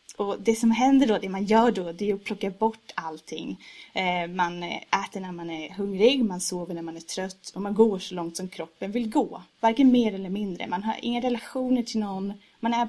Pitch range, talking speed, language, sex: 180-215 Hz, 225 wpm, Swedish, female